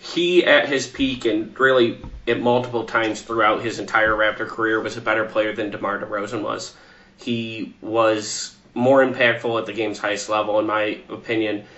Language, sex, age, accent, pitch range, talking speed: English, male, 30-49, American, 105-120 Hz, 175 wpm